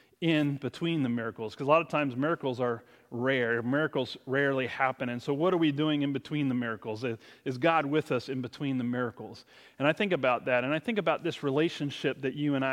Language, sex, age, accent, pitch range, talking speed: English, male, 30-49, American, 135-165 Hz, 220 wpm